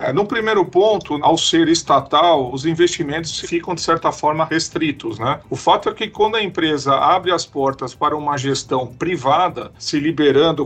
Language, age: Portuguese, 40-59